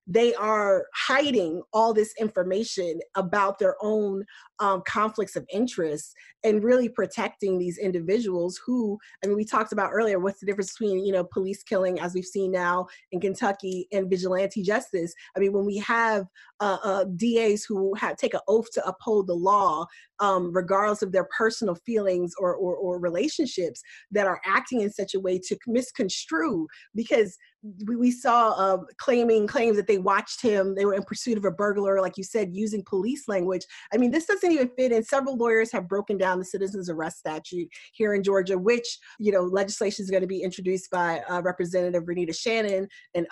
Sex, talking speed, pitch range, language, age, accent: female, 190 wpm, 185-220 Hz, English, 20-39, American